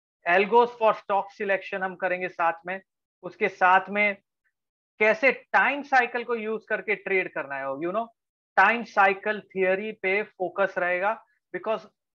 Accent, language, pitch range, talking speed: Indian, English, 180-220 Hz, 95 wpm